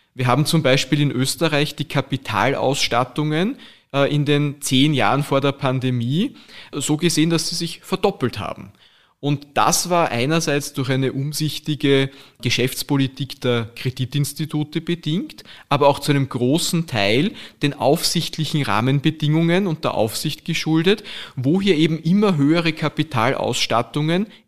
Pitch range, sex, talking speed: 125-160 Hz, male, 125 wpm